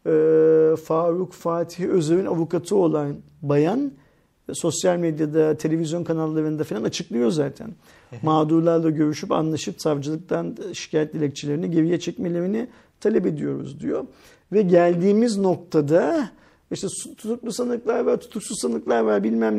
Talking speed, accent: 110 wpm, native